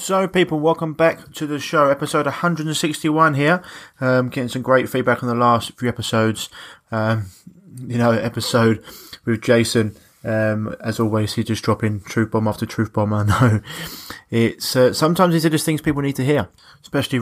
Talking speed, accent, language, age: 175 wpm, British, English, 20-39